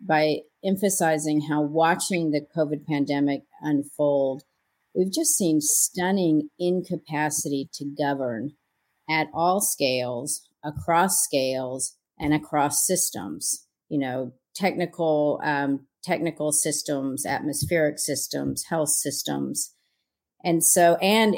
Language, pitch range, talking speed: English, 140-170 Hz, 100 wpm